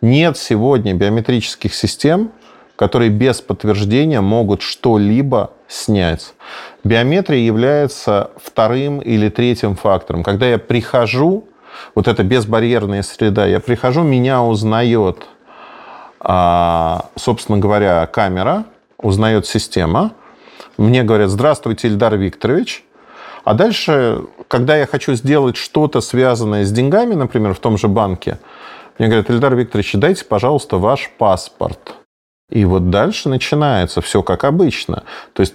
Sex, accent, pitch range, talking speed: male, native, 100-130 Hz, 115 wpm